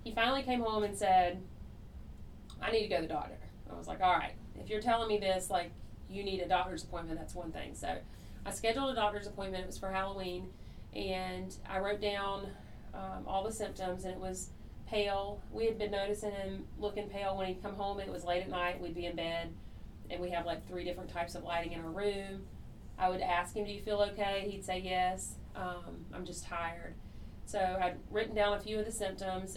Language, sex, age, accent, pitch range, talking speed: English, female, 30-49, American, 175-200 Hz, 225 wpm